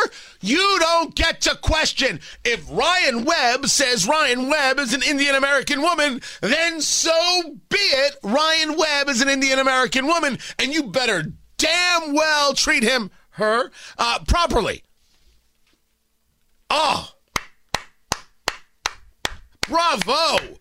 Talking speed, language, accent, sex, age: 110 wpm, English, American, male, 40-59